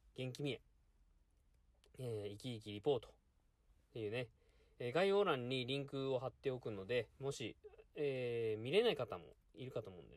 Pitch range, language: 105-150 Hz, Japanese